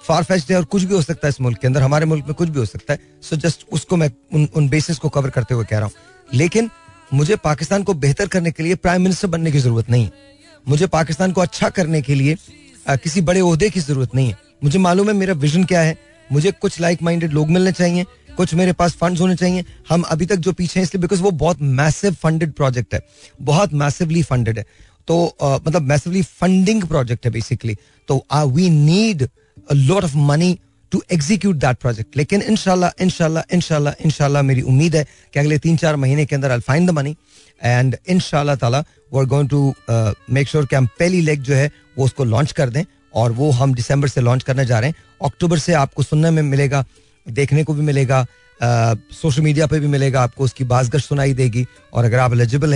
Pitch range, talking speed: 135-175 Hz, 220 wpm